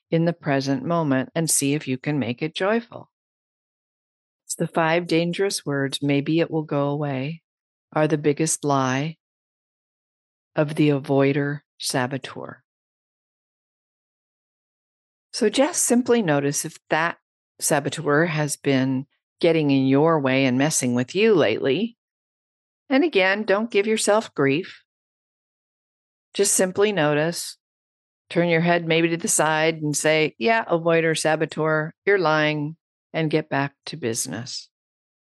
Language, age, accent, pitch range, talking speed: English, 50-69, American, 140-170 Hz, 130 wpm